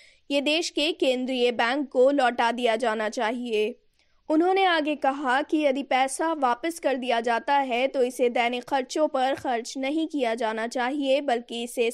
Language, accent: Hindi, native